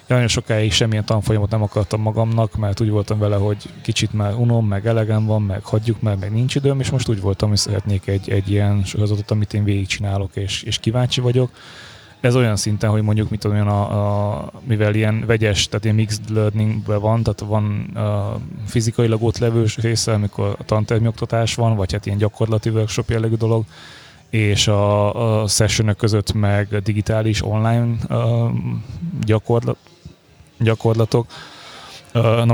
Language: Hungarian